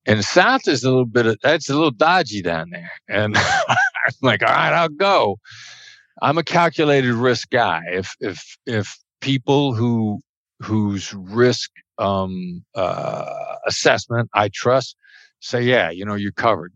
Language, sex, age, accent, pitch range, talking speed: English, male, 50-69, American, 100-120 Hz, 160 wpm